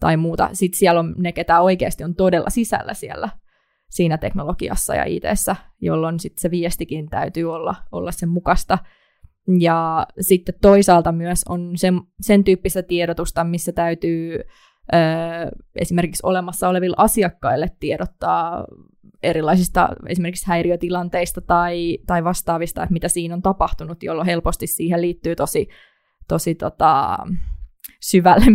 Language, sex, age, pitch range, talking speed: Finnish, female, 20-39, 165-185 Hz, 130 wpm